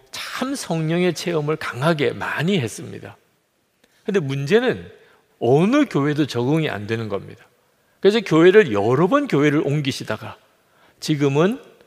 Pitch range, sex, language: 120-175 Hz, male, Korean